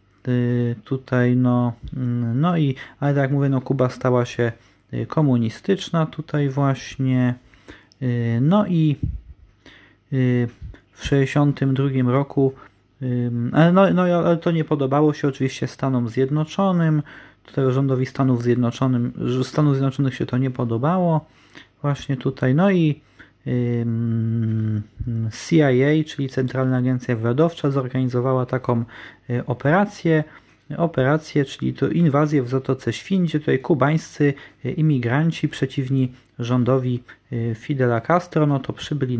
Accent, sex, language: native, male, Polish